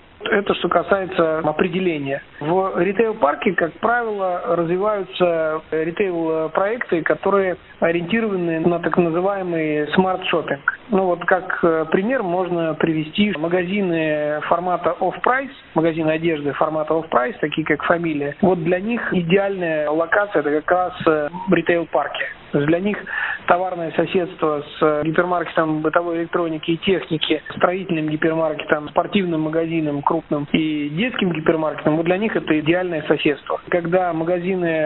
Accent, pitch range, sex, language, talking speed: native, 155-185 Hz, male, Russian, 120 wpm